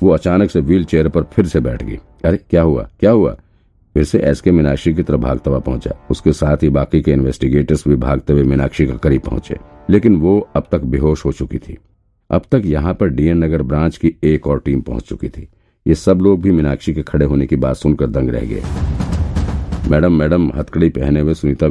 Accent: native